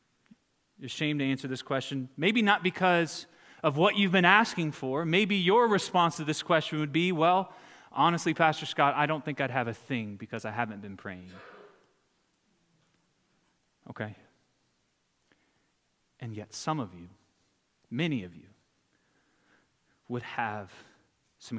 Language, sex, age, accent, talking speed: English, male, 30-49, American, 140 wpm